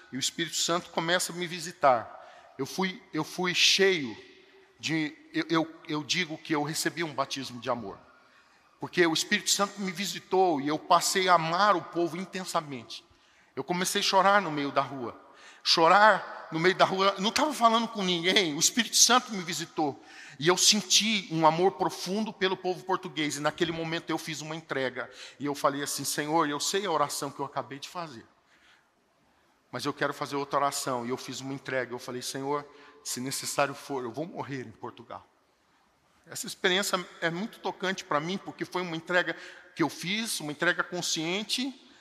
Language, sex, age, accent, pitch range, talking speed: Portuguese, male, 50-69, Brazilian, 145-190 Hz, 185 wpm